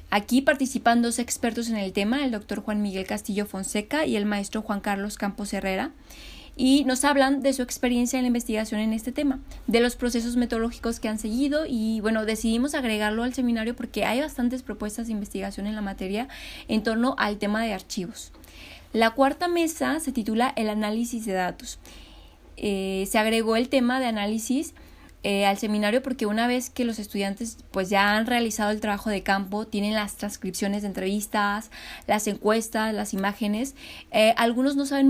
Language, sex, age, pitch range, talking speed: Spanish, female, 20-39, 205-245 Hz, 180 wpm